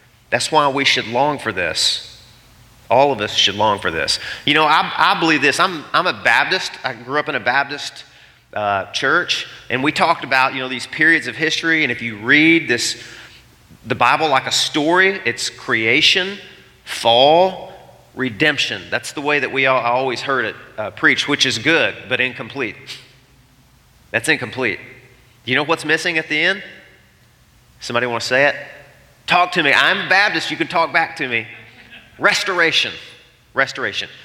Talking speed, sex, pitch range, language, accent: 175 wpm, male, 120-160 Hz, English, American